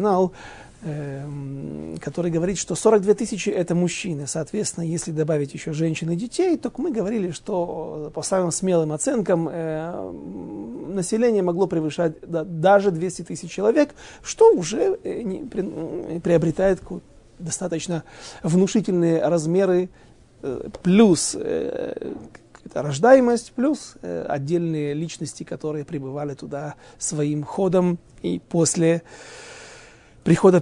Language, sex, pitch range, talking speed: Russian, male, 160-200 Hz, 95 wpm